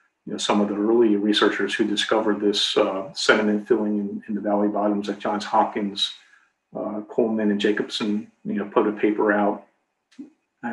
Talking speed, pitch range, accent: 170 wpm, 105-110 Hz, American